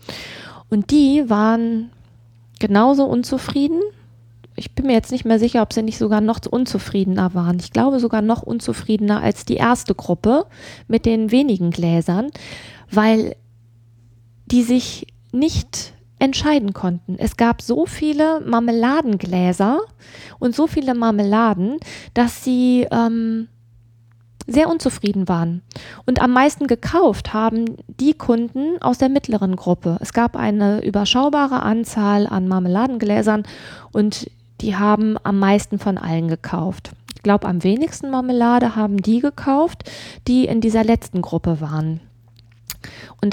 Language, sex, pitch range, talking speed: German, female, 180-245 Hz, 130 wpm